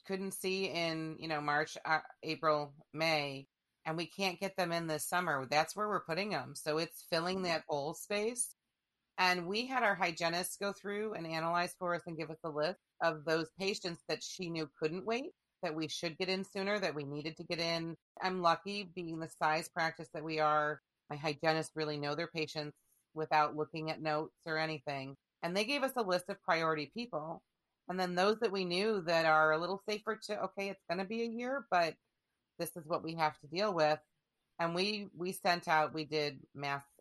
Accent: American